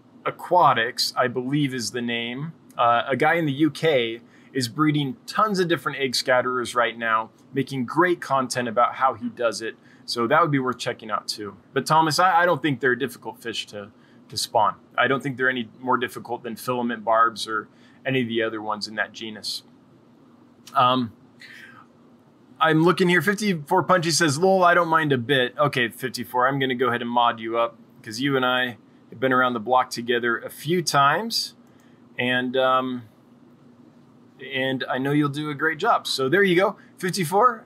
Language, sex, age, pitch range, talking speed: English, male, 20-39, 120-160 Hz, 190 wpm